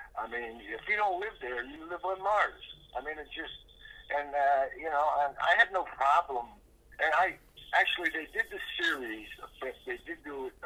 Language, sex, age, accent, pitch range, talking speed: English, male, 60-79, American, 130-205 Hz, 205 wpm